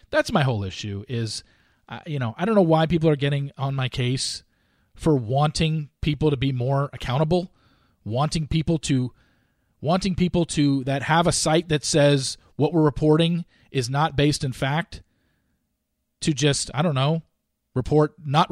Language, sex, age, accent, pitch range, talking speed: English, male, 40-59, American, 110-160 Hz, 165 wpm